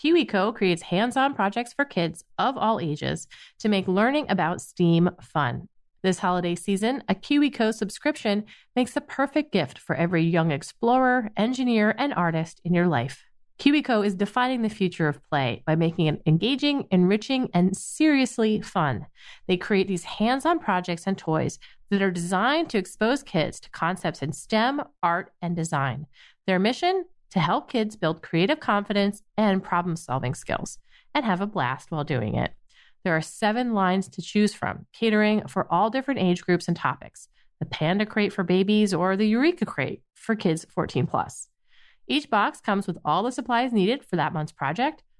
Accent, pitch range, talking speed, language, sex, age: American, 170-230 Hz, 170 wpm, English, female, 40-59